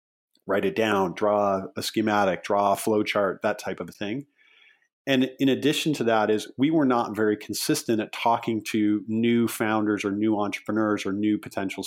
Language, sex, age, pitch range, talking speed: English, male, 40-59, 100-115 Hz, 180 wpm